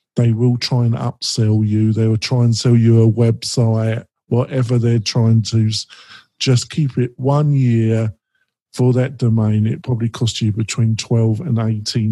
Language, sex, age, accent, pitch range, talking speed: English, male, 50-69, British, 115-135 Hz, 165 wpm